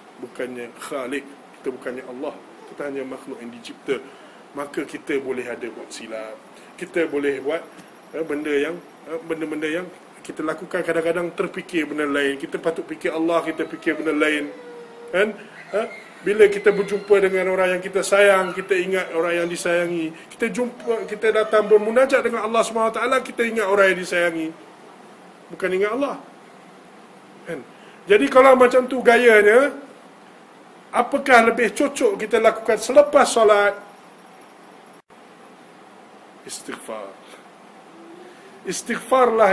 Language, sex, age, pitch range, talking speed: Malay, male, 20-39, 170-235 Hz, 130 wpm